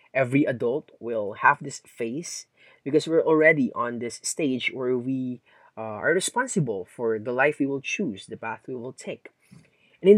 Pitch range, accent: 125-195 Hz, Filipino